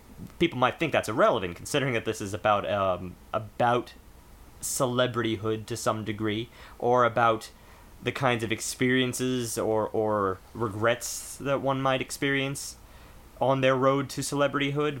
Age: 30-49